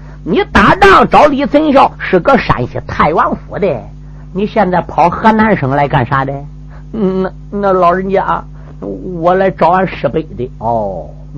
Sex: male